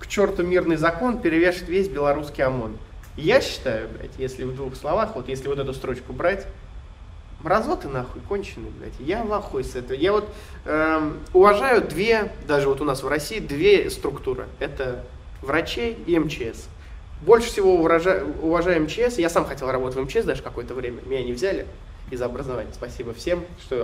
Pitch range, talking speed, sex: 130-185 Hz, 170 wpm, male